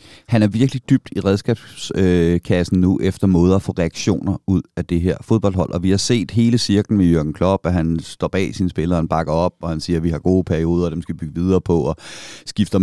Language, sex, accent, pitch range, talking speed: Danish, male, native, 90-110 Hz, 245 wpm